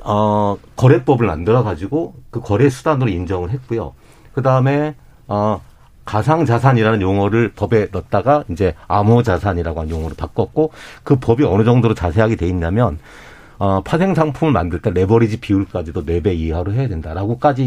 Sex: male